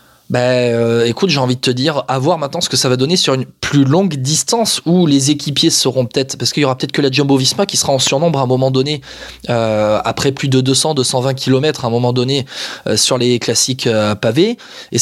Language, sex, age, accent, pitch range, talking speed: French, male, 20-39, French, 125-165 Hz, 250 wpm